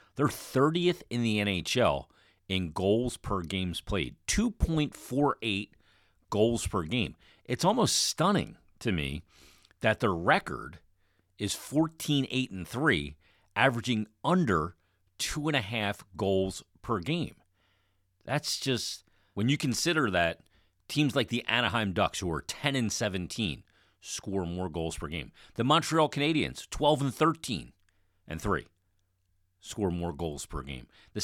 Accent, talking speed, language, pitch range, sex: American, 130 wpm, English, 90-125 Hz, male